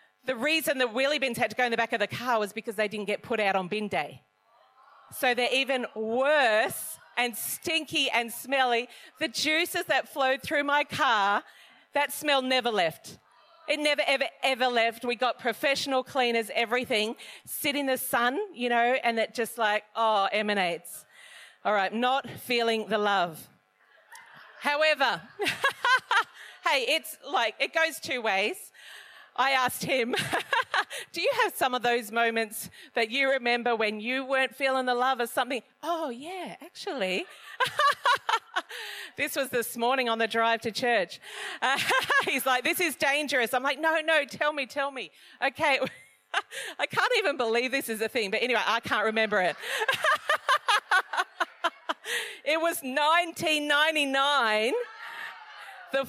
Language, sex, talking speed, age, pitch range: English, female, 155 wpm, 40-59, 235-310 Hz